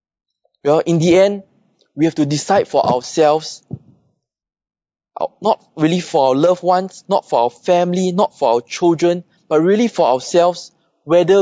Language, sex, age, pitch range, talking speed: English, male, 20-39, 145-190 Hz, 145 wpm